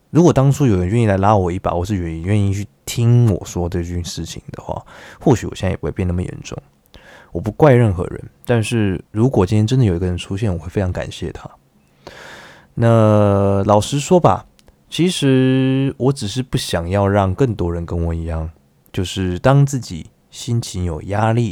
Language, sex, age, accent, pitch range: Chinese, male, 20-39, native, 90-120 Hz